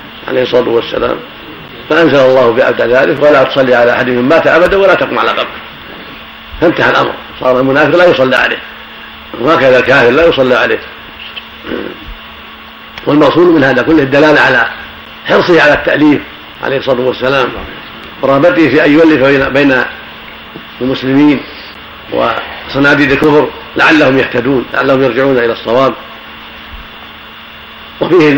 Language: Arabic